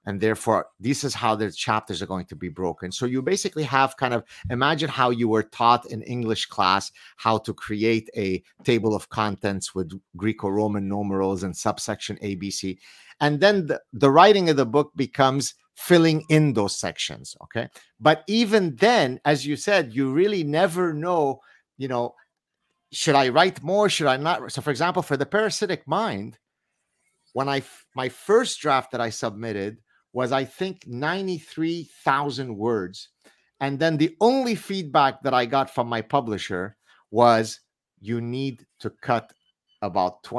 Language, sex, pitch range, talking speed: English, male, 110-155 Hz, 165 wpm